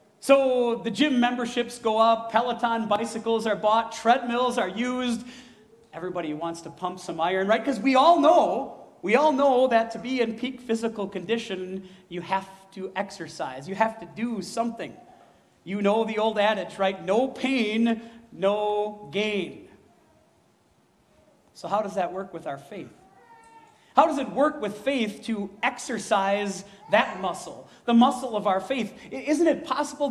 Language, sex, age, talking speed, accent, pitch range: English, male, 40-59, 155 wpm, American, 195-245 Hz